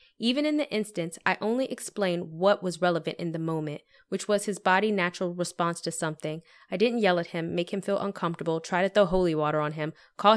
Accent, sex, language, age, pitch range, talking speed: American, female, English, 20-39, 170-215 Hz, 220 wpm